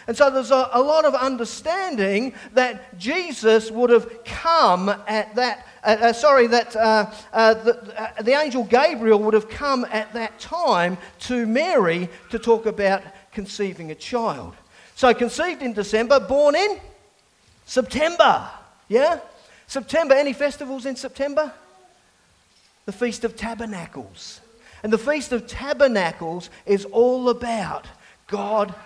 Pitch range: 200-255 Hz